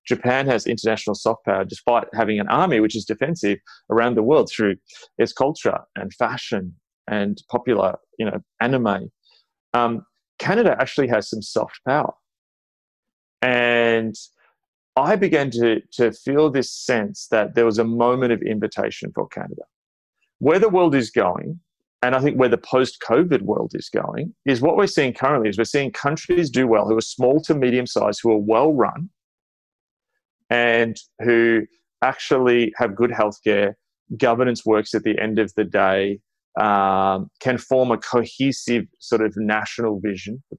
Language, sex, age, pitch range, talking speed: English, male, 30-49, 105-125 Hz, 160 wpm